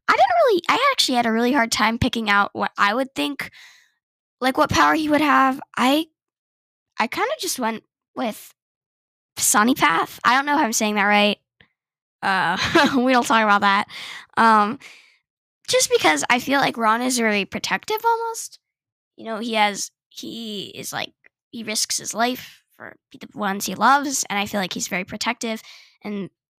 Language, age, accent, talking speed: English, 10-29, American, 180 wpm